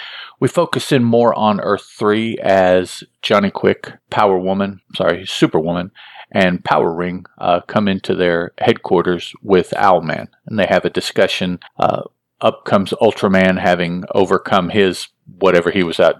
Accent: American